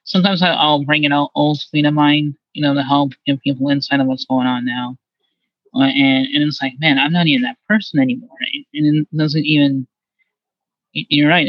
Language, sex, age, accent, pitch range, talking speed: English, male, 20-39, American, 140-205 Hz, 195 wpm